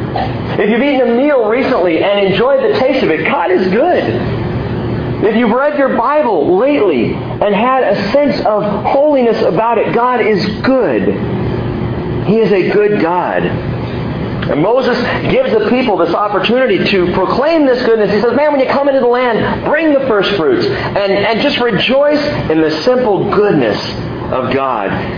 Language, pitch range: English, 160-255 Hz